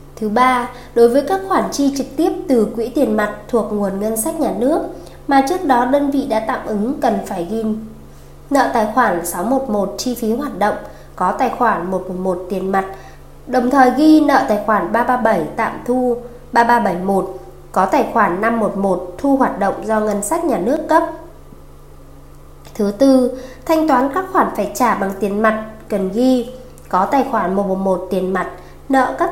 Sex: female